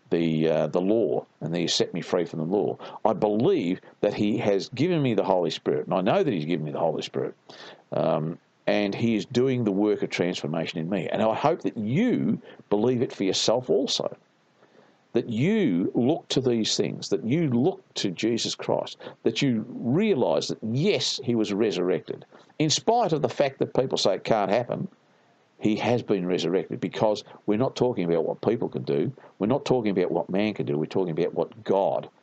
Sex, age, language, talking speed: male, 50-69, English, 205 wpm